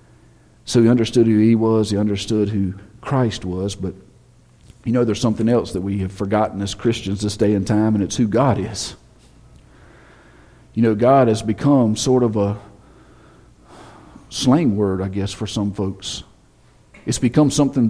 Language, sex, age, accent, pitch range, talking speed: English, male, 50-69, American, 100-120 Hz, 170 wpm